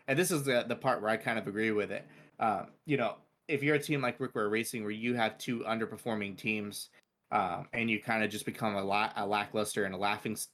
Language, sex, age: English, male, 20-39